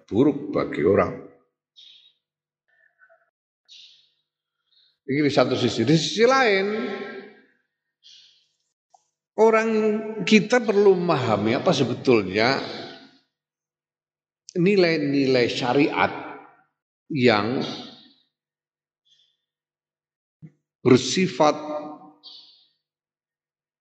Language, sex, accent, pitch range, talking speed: Indonesian, male, native, 135-195 Hz, 50 wpm